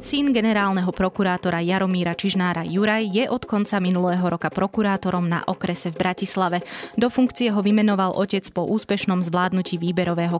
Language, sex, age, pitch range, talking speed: Slovak, female, 20-39, 180-215 Hz, 145 wpm